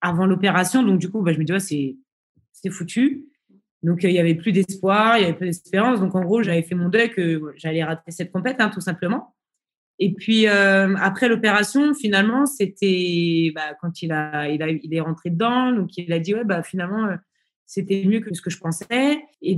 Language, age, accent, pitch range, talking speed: French, 20-39, French, 165-215 Hz, 210 wpm